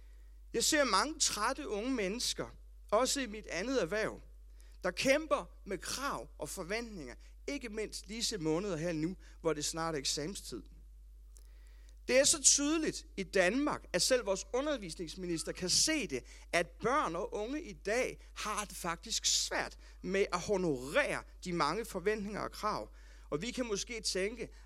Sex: male